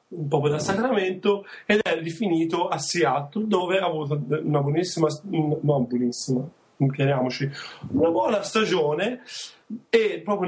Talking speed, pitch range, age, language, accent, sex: 120 wpm, 150-195 Hz, 30-49, English, Italian, male